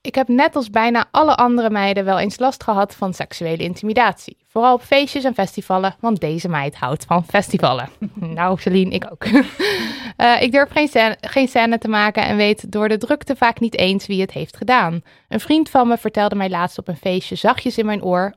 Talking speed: 210 wpm